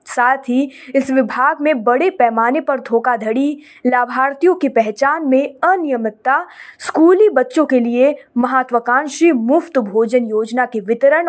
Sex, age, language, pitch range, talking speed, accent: female, 20-39, Hindi, 240-300 Hz, 130 wpm, native